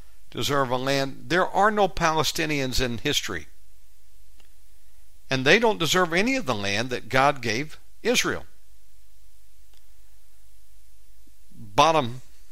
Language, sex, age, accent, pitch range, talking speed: English, male, 60-79, American, 95-140 Hz, 105 wpm